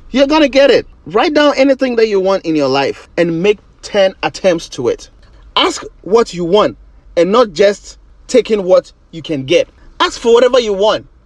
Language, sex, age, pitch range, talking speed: English, male, 30-49, 160-260 Hz, 195 wpm